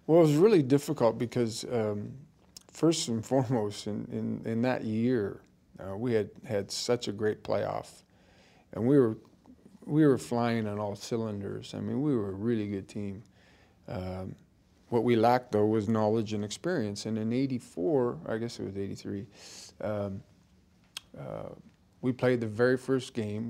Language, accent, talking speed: English, American, 165 wpm